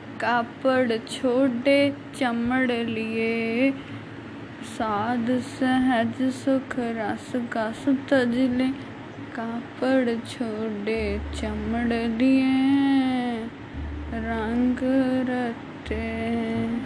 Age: 20-39